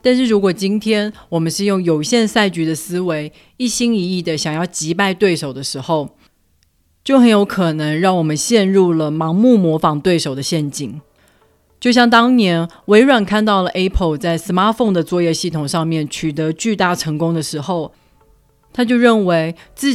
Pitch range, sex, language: 155-205 Hz, female, Chinese